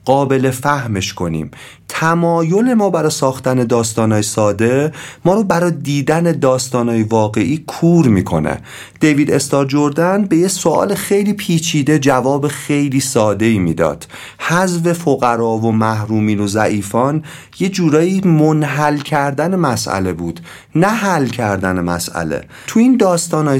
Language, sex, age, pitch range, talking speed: Persian, male, 40-59, 115-160 Hz, 125 wpm